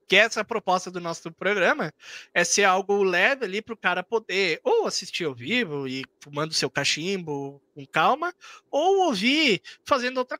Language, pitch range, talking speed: Portuguese, 180-250 Hz, 165 wpm